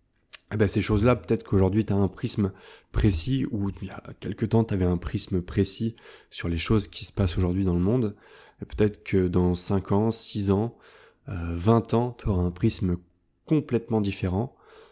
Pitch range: 95-115 Hz